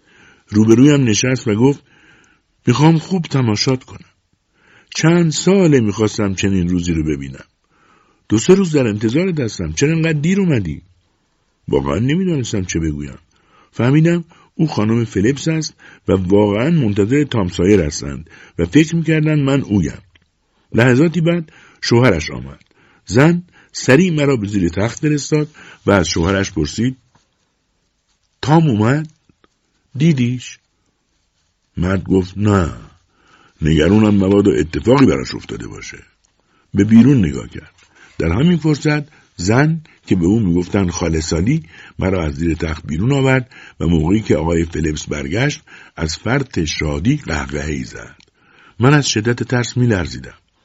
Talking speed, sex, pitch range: 130 wpm, male, 85-140 Hz